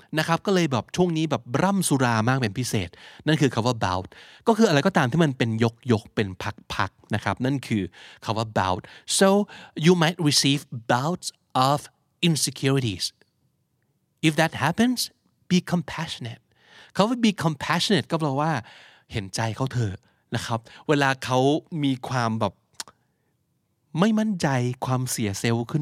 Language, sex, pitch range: Thai, male, 115-160 Hz